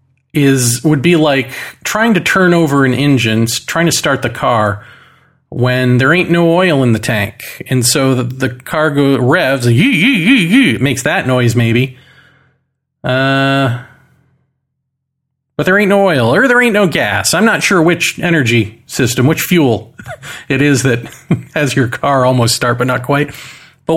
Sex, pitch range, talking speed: male, 130-155 Hz, 170 wpm